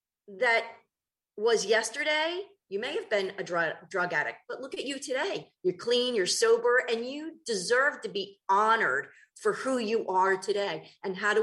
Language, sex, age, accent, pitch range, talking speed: English, female, 40-59, American, 190-300 Hz, 180 wpm